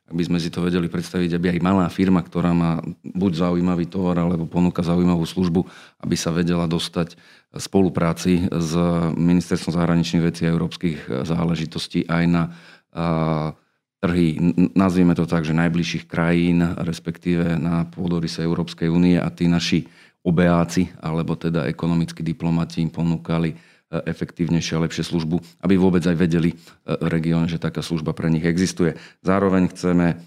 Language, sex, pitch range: Slovak, male, 80-85 Hz